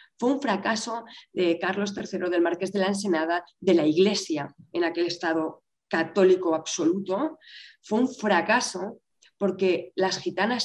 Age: 20-39